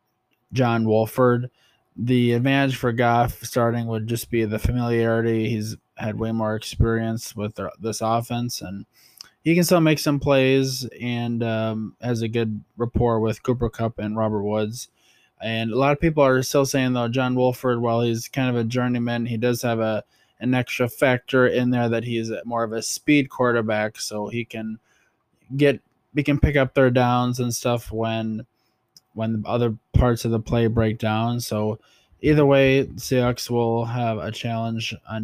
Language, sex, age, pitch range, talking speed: English, male, 20-39, 110-125 Hz, 175 wpm